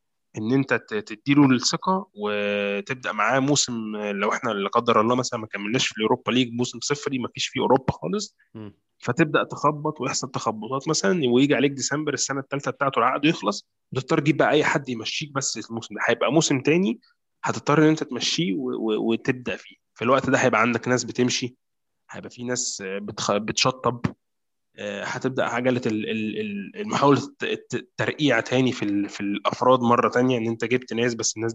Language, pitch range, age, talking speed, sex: Arabic, 115-135 Hz, 20-39, 165 wpm, male